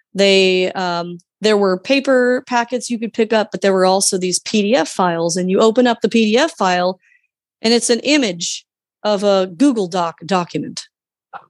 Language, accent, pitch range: English, American, 185-225 Hz